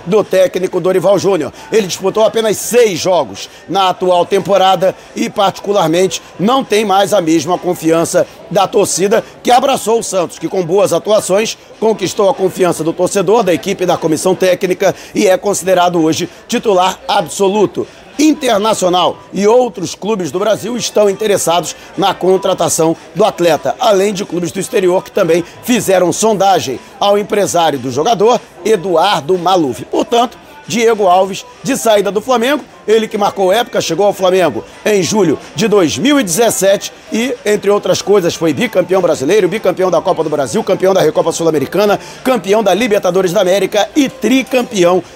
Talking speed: 150 wpm